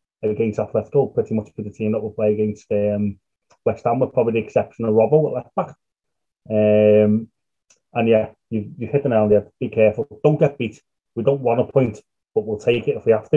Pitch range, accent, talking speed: 105-135 Hz, British, 240 wpm